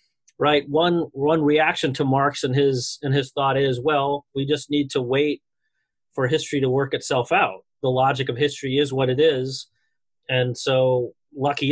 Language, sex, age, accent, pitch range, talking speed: English, male, 30-49, American, 130-150 Hz, 180 wpm